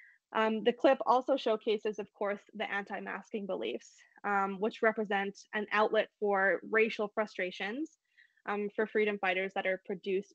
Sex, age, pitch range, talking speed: female, 20-39, 195-235 Hz, 145 wpm